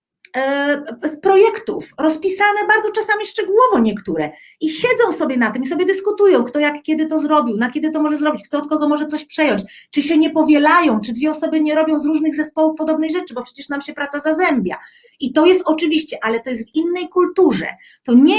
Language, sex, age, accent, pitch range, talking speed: Polish, female, 40-59, native, 290-355 Hz, 205 wpm